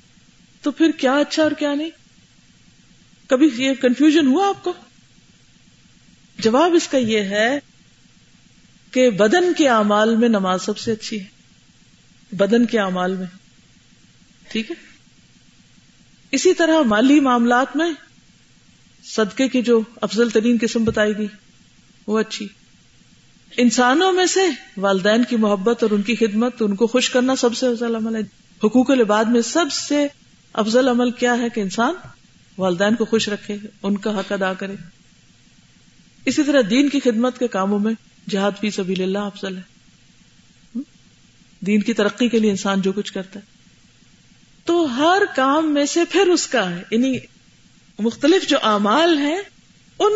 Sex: female